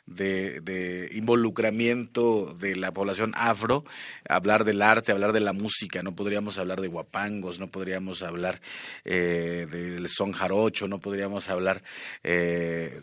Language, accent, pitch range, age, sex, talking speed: Spanish, Mexican, 95-110 Hz, 30-49, male, 140 wpm